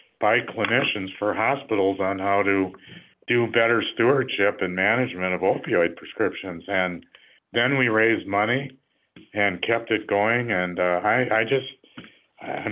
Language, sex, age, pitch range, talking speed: English, male, 50-69, 95-115 Hz, 140 wpm